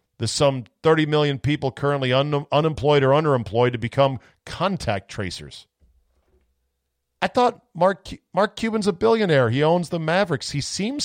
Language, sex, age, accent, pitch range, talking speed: English, male, 40-59, American, 105-150 Hz, 145 wpm